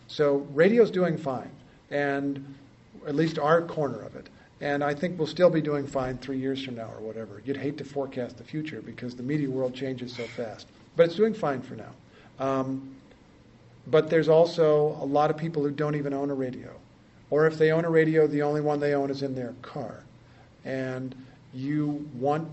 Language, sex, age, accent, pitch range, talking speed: English, male, 50-69, American, 135-160 Hz, 200 wpm